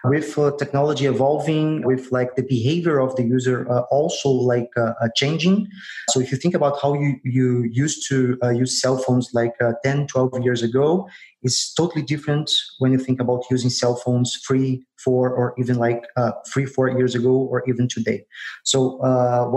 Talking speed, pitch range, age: 190 wpm, 125-140 Hz, 30-49